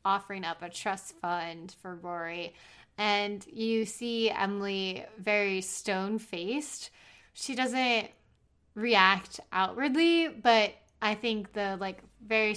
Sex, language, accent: female, English, American